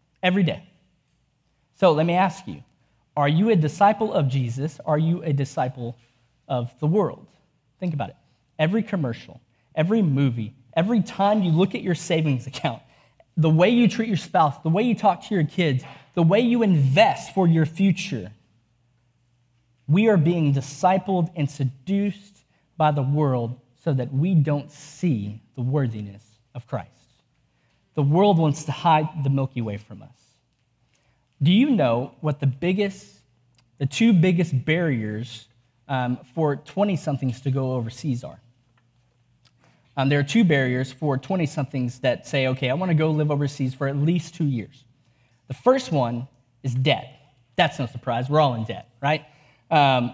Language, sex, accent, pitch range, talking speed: English, male, American, 125-170 Hz, 160 wpm